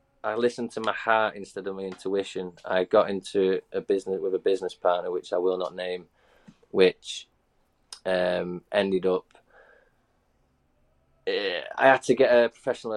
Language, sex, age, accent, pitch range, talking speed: English, male, 20-39, British, 95-125 Hz, 155 wpm